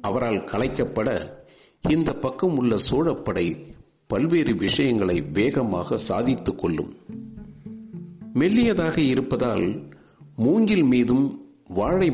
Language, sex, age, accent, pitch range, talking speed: Tamil, male, 50-69, native, 115-155 Hz, 80 wpm